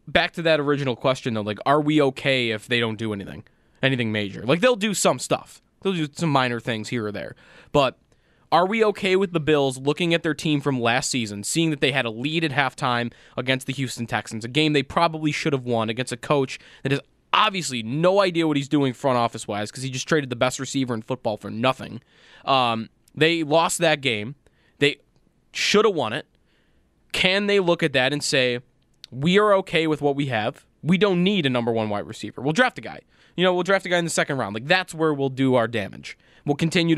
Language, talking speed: English, 230 wpm